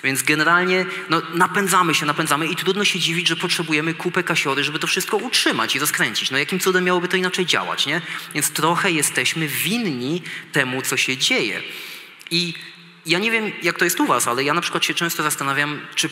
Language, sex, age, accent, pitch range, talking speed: Polish, male, 20-39, native, 140-180 Hz, 195 wpm